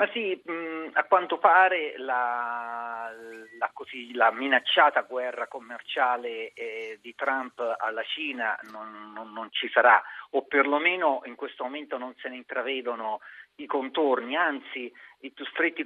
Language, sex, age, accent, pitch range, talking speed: Italian, male, 40-59, native, 120-155 Hz, 140 wpm